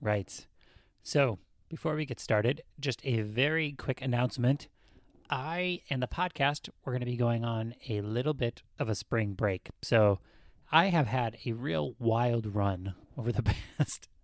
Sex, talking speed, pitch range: male, 165 wpm, 110-140 Hz